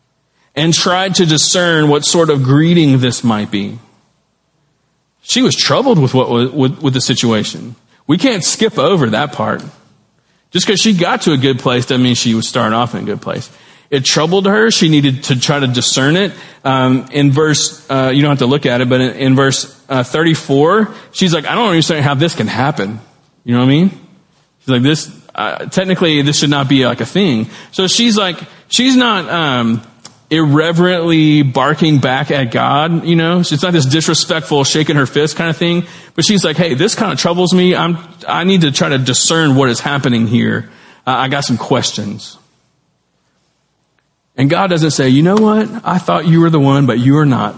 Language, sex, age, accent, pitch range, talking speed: English, male, 30-49, American, 130-170 Hz, 205 wpm